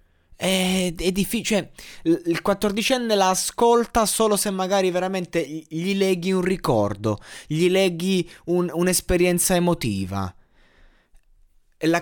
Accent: native